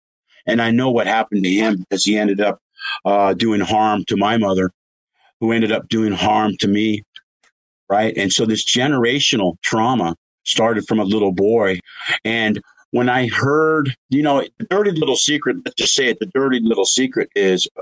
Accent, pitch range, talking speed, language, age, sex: American, 95-120 Hz, 180 wpm, English, 50-69, male